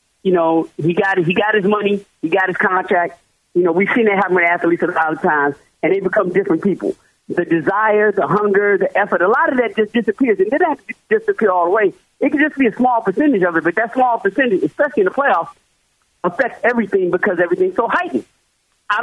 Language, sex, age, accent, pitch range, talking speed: English, male, 40-59, American, 195-275 Hz, 230 wpm